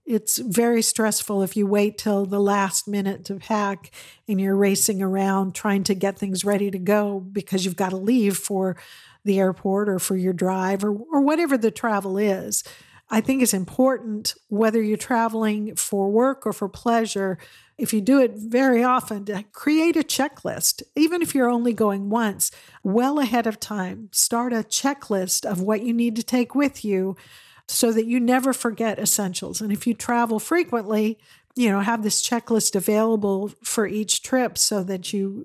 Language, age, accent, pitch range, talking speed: English, 50-69, American, 200-235 Hz, 180 wpm